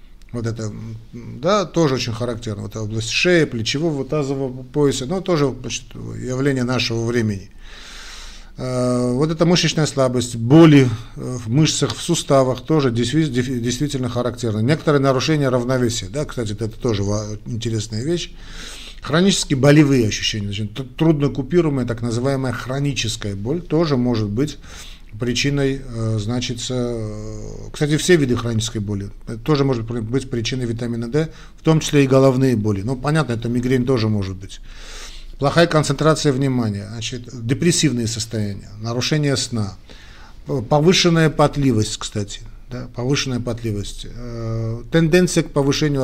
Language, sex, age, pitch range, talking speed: Russian, male, 50-69, 110-145 Hz, 125 wpm